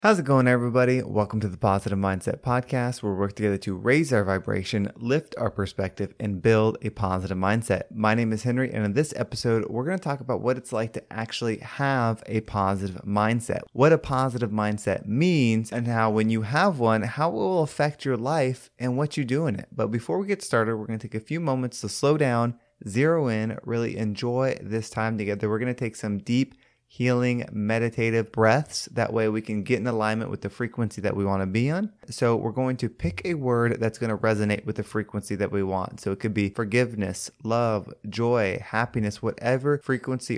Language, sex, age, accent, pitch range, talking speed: English, male, 20-39, American, 105-125 Hz, 215 wpm